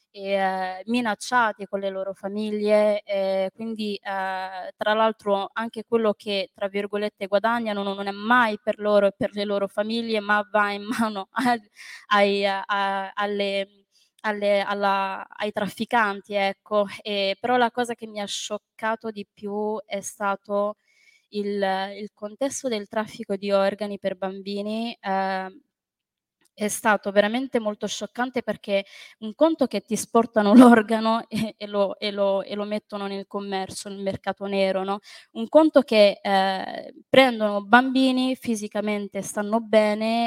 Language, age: Italian, 20-39